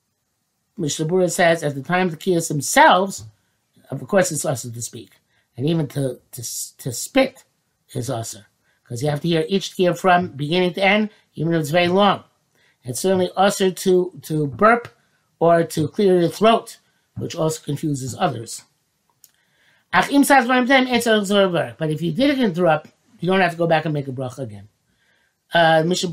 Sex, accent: male, American